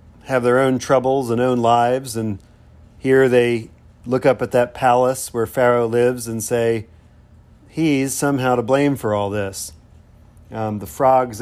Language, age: English, 40-59